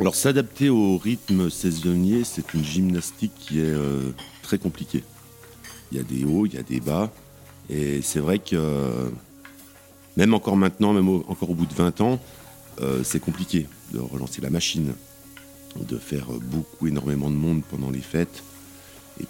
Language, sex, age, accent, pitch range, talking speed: French, male, 50-69, French, 75-105 Hz, 170 wpm